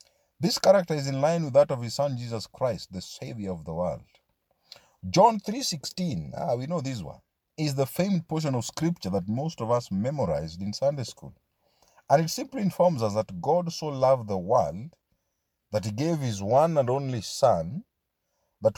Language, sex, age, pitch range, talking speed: English, male, 50-69, 110-155 Hz, 190 wpm